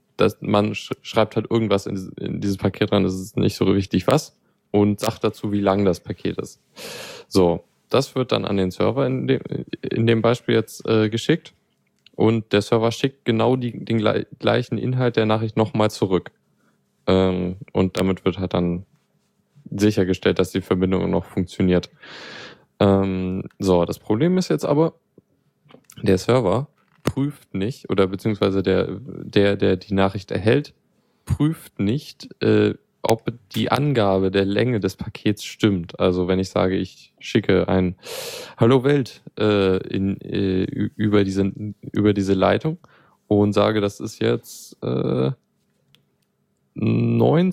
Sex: male